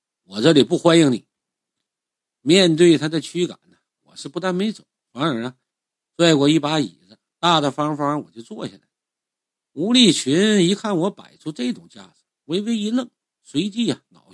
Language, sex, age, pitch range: Chinese, male, 50-69, 140-185 Hz